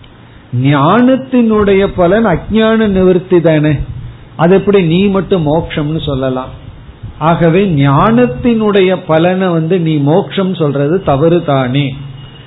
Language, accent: Tamil, native